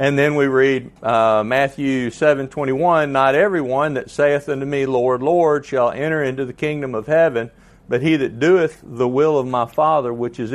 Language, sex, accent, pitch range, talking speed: English, male, American, 120-145 Hz, 200 wpm